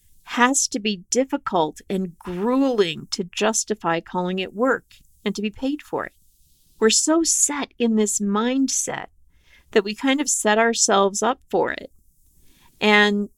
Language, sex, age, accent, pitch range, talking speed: English, female, 50-69, American, 190-255 Hz, 150 wpm